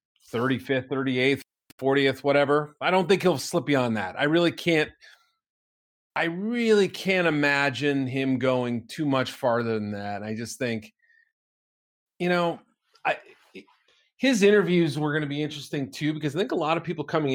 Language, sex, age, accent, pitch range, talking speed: English, male, 40-59, American, 125-165 Hz, 175 wpm